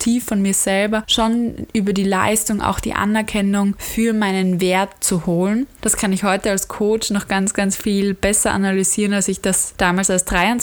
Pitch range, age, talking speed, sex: 190-215 Hz, 20-39, 180 wpm, female